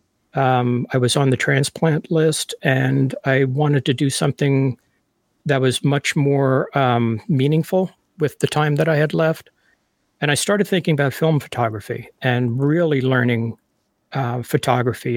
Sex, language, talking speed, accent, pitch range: male, English, 150 wpm, American, 130-150 Hz